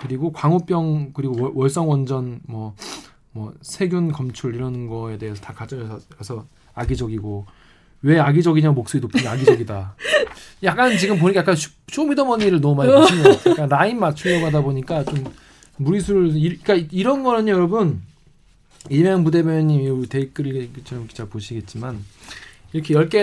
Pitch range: 130-180 Hz